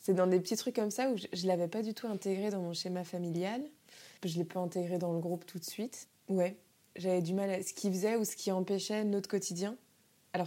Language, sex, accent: French, female, French